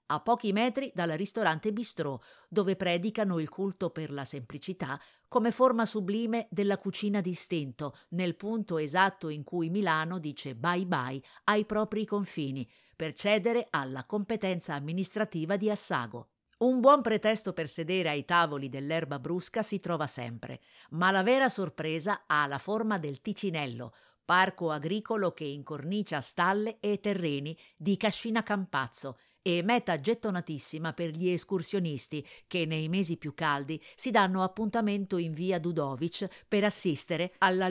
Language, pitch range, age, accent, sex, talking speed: Italian, 155-205 Hz, 50-69, native, female, 140 wpm